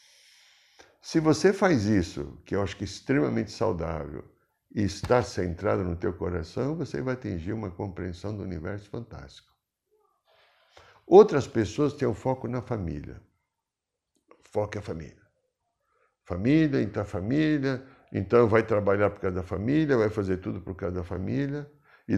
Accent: Brazilian